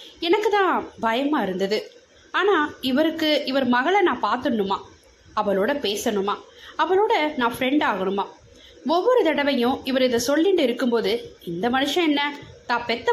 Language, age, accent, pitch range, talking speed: Tamil, 20-39, native, 230-345 Hz, 115 wpm